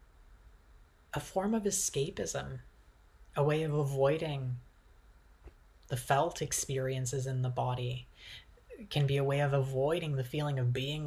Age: 30-49